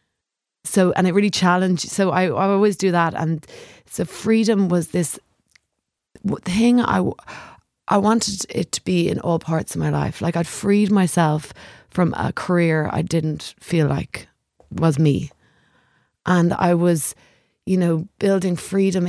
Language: English